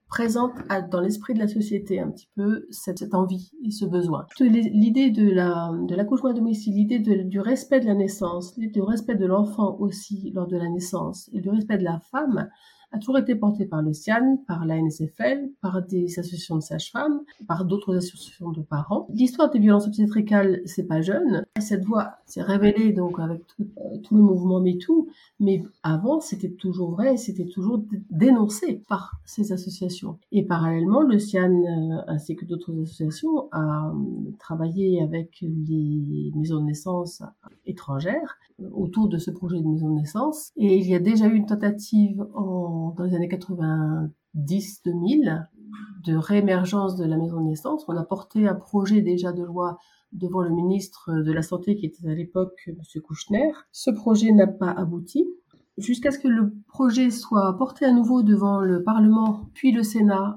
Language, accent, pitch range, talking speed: French, French, 175-215 Hz, 175 wpm